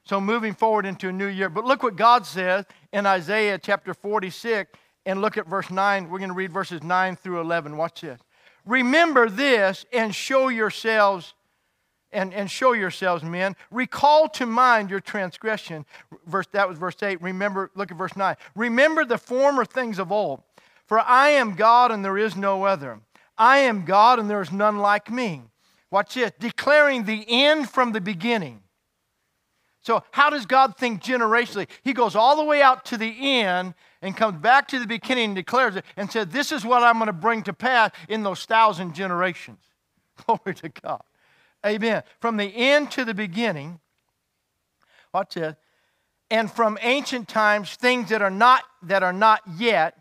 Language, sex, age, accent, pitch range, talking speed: English, male, 50-69, American, 190-240 Hz, 180 wpm